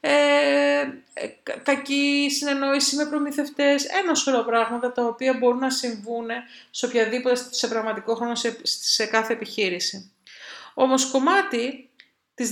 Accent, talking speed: native, 120 wpm